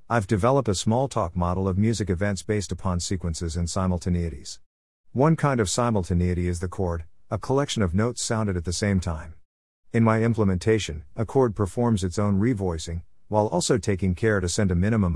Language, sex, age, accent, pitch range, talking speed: English, male, 50-69, American, 85-115 Hz, 185 wpm